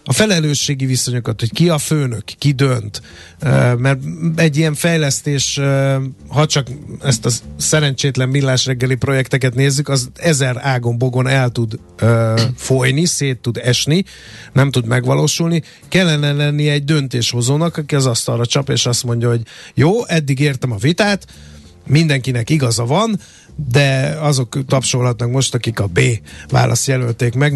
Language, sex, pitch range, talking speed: Hungarian, male, 120-145 Hz, 140 wpm